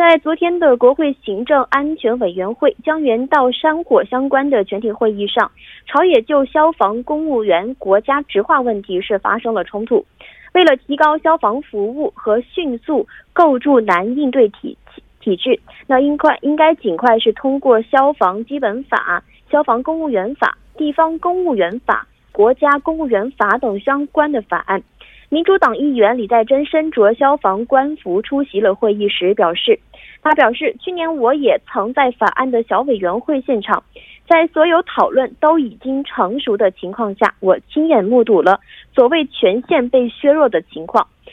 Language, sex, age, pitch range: Korean, female, 20-39, 225-310 Hz